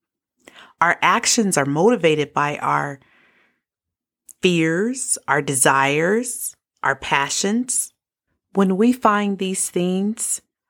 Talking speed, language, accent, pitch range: 90 wpm, English, American, 155-210 Hz